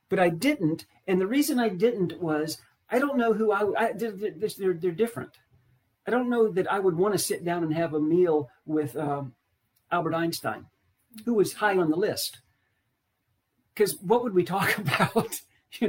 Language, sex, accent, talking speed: English, male, American, 185 wpm